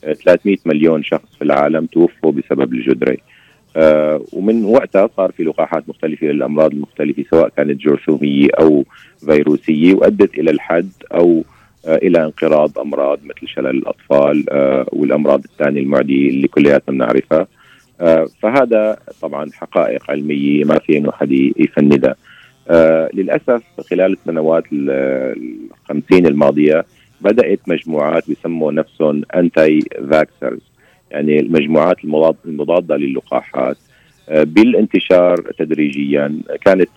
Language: Arabic